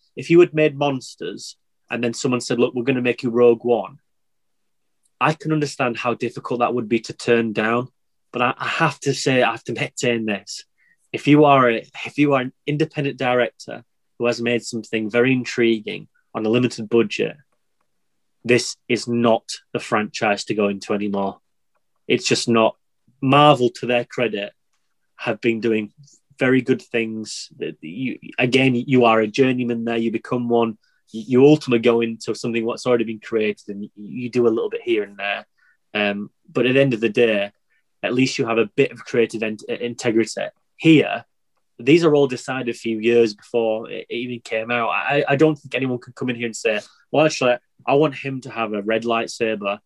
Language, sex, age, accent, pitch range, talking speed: English, male, 30-49, British, 115-135 Hz, 195 wpm